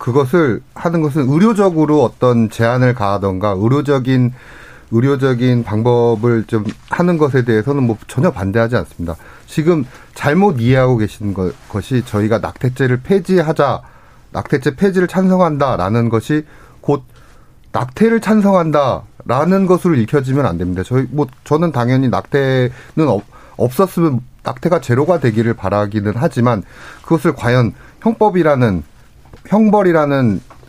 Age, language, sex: 40-59, Korean, male